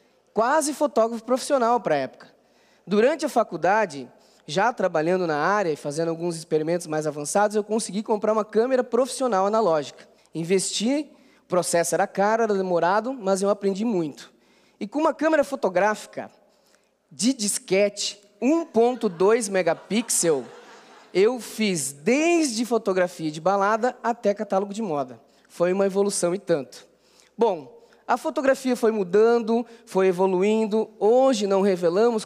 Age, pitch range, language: 20-39, 175-230 Hz, Portuguese